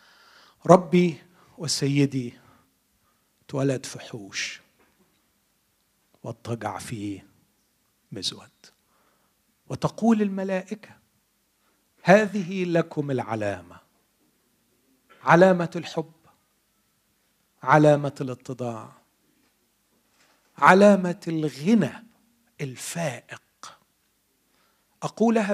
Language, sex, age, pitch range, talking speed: Arabic, male, 40-59, 130-205 Hz, 45 wpm